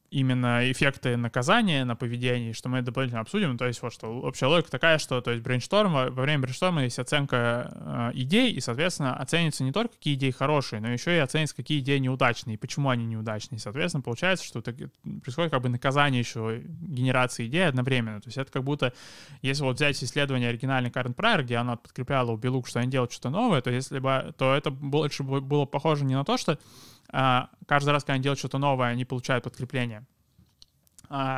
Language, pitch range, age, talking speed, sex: Russian, 125-145 Hz, 20-39, 195 wpm, male